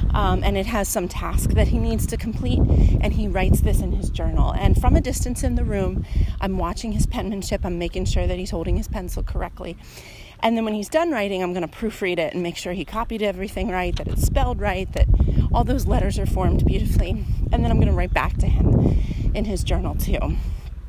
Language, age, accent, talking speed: English, 30-49, American, 230 wpm